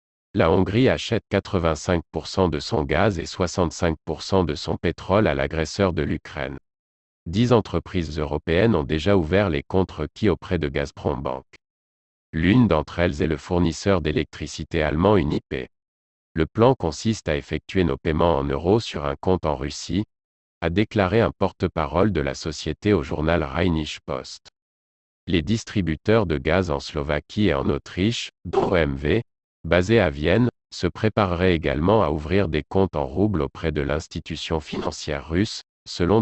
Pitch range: 75-95 Hz